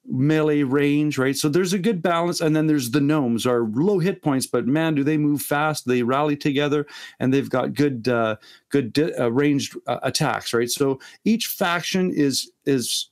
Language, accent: English, American